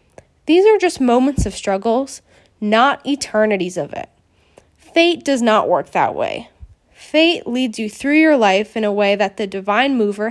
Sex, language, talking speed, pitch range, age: female, English, 170 wpm, 210-310 Hz, 10-29